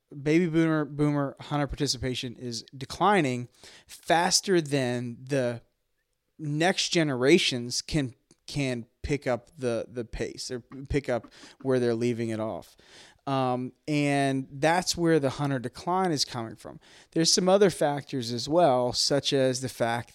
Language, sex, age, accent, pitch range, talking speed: English, male, 20-39, American, 120-145 Hz, 140 wpm